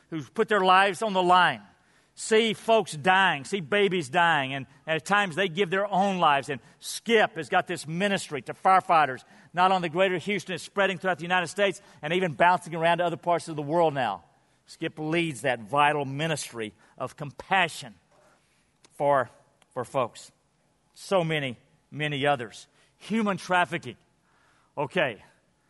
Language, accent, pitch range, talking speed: English, American, 155-195 Hz, 160 wpm